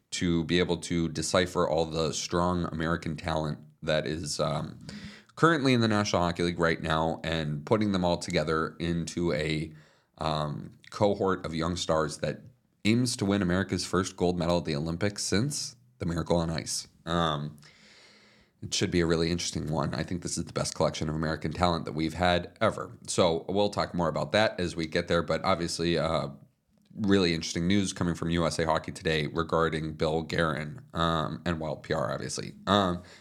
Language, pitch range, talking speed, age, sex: English, 80-95 Hz, 185 wpm, 30-49, male